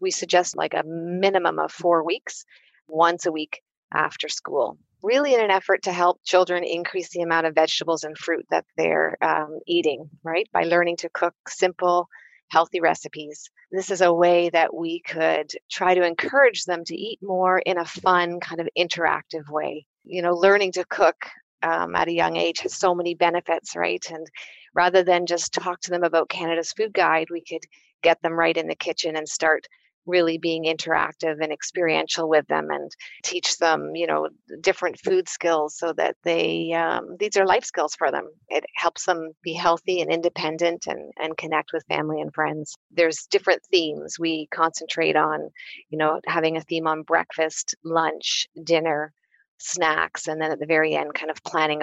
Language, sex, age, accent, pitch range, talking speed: English, female, 30-49, American, 160-180 Hz, 185 wpm